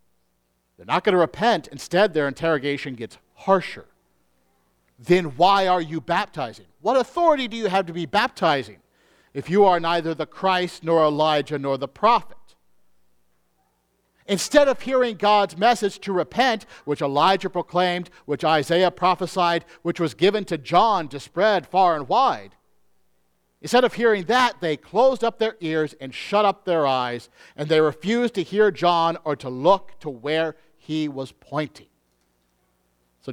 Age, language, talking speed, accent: 50-69, English, 155 wpm, American